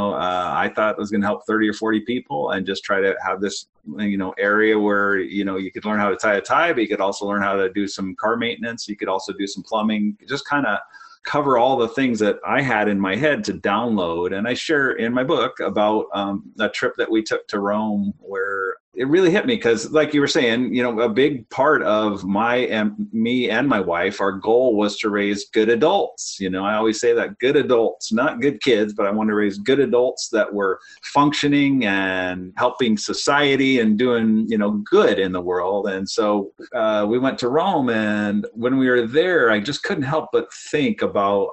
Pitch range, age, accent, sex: 100-130 Hz, 30-49, American, male